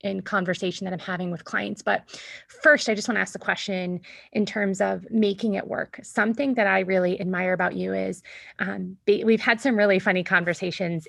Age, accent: 20-39, American